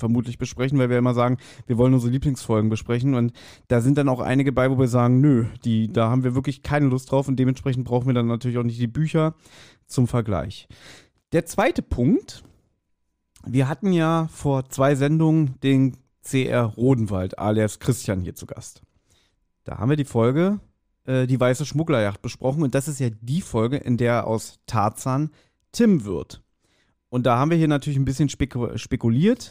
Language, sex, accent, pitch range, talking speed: German, male, German, 120-145 Hz, 180 wpm